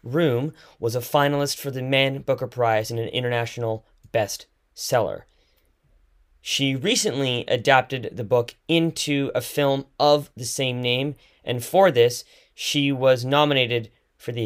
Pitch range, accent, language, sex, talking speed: 110-145 Hz, American, English, male, 135 wpm